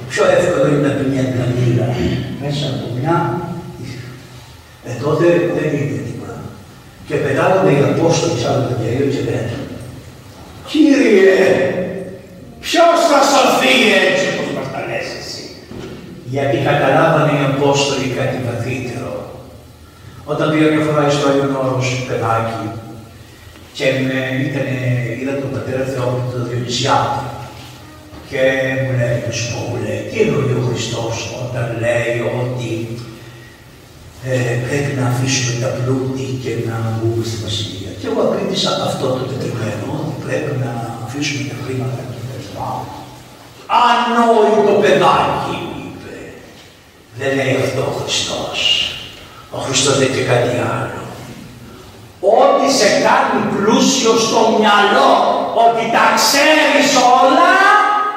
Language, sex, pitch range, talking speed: Greek, male, 120-150 Hz, 110 wpm